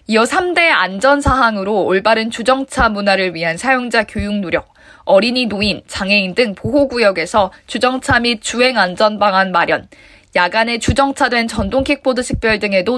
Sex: female